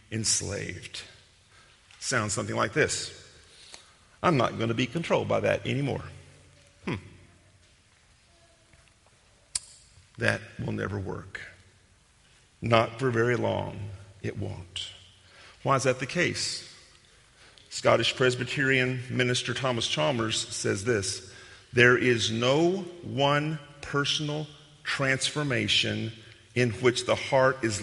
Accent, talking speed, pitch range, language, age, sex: American, 105 wpm, 105-135 Hz, English, 50-69, male